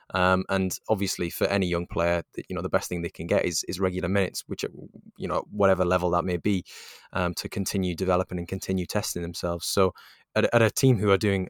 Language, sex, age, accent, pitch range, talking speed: English, male, 20-39, British, 90-100 Hz, 230 wpm